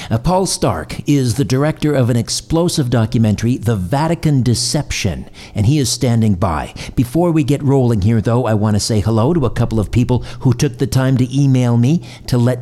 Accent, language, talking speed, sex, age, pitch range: American, English, 200 wpm, male, 50-69, 110-140 Hz